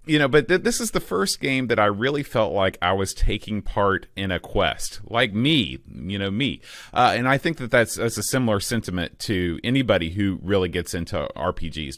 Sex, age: male, 30-49